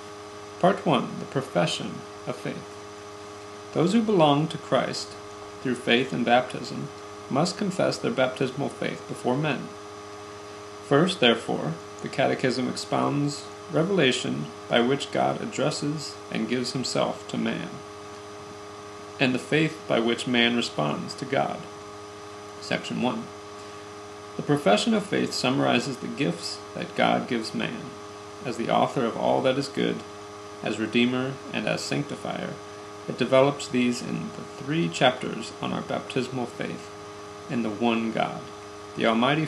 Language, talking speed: English, 135 wpm